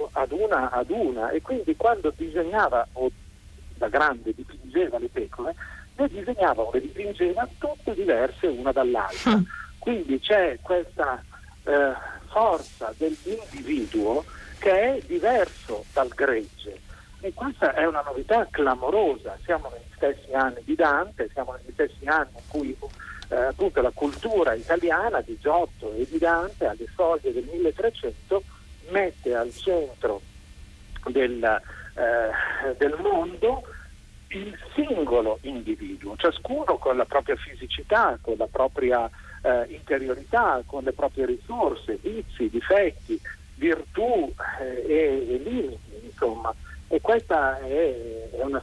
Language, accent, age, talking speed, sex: Italian, native, 50-69, 125 wpm, male